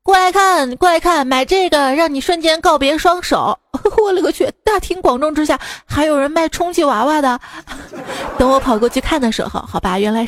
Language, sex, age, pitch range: Chinese, female, 20-39, 180-275 Hz